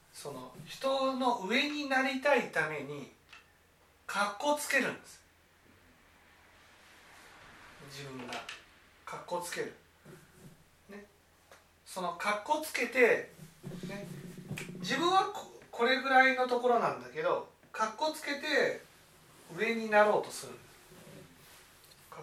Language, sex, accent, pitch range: Japanese, male, native, 165-260 Hz